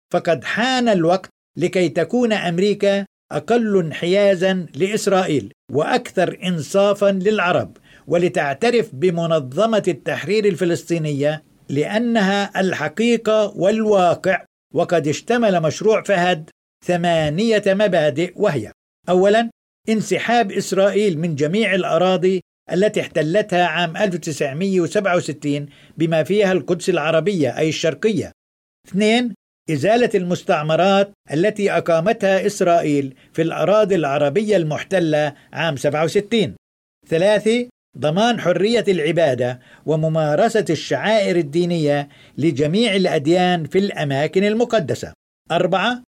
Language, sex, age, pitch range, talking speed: Arabic, male, 50-69, 160-210 Hz, 85 wpm